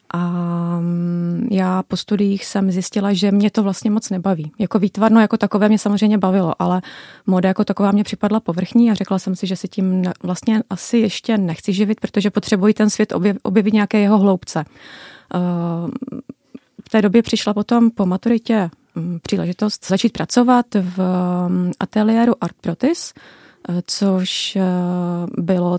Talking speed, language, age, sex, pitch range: 145 wpm, Czech, 30-49, female, 180-210 Hz